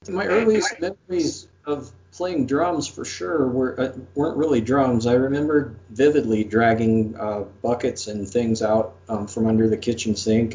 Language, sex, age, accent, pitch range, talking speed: English, male, 50-69, American, 95-120 Hz, 160 wpm